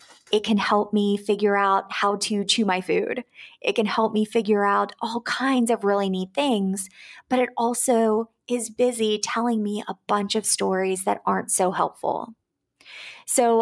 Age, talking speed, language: 20-39, 170 wpm, English